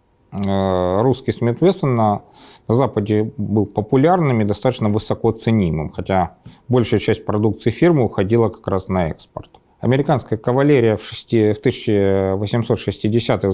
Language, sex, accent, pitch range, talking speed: Russian, male, native, 105-130 Hz, 120 wpm